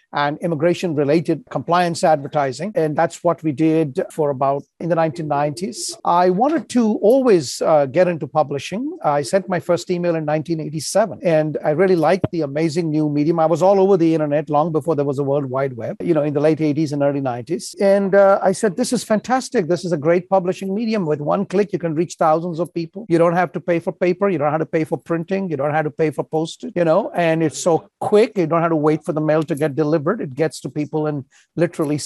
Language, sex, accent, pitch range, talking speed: English, male, Indian, 155-185 Hz, 235 wpm